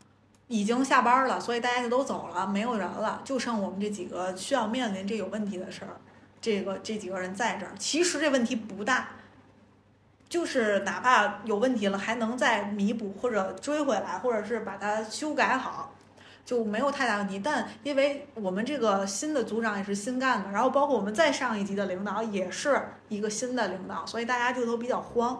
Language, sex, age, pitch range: Chinese, female, 20-39, 200-255 Hz